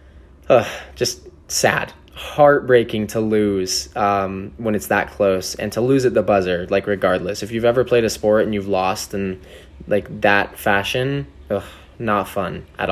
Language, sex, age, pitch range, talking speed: English, male, 20-39, 95-120 Hz, 165 wpm